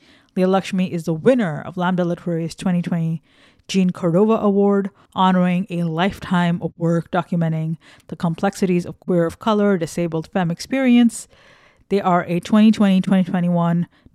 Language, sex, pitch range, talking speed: English, female, 175-210 Hz, 130 wpm